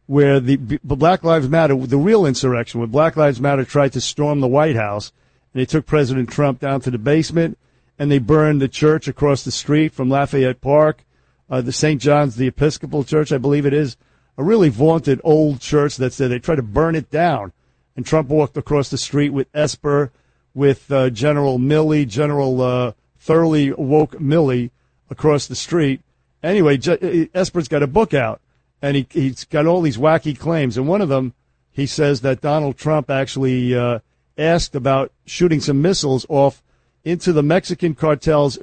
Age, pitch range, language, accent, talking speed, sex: 50-69, 130-160 Hz, English, American, 185 wpm, male